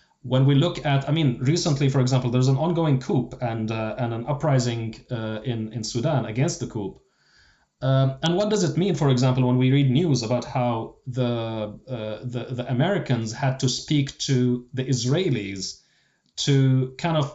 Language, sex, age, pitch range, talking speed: English, male, 30-49, 120-140 Hz, 185 wpm